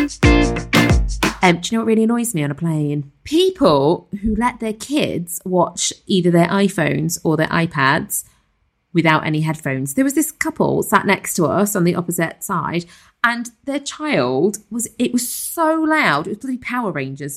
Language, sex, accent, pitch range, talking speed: English, female, British, 170-240 Hz, 180 wpm